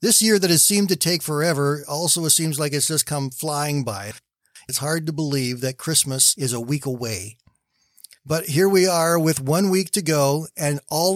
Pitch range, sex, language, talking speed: 130-170 Hz, male, English, 205 wpm